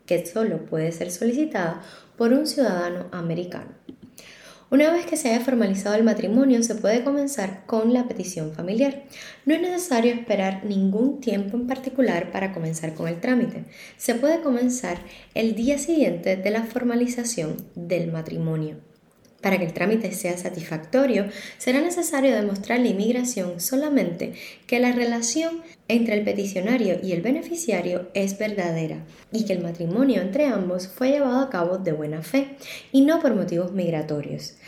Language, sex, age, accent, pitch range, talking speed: English, female, 10-29, American, 170-250 Hz, 155 wpm